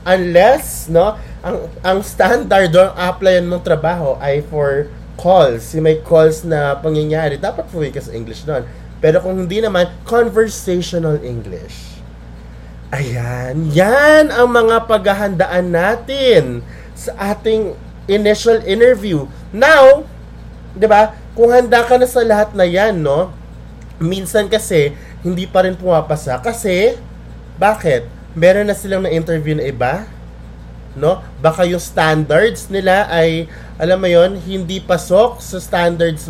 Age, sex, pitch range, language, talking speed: 20-39, male, 145-195 Hz, Filipino, 125 wpm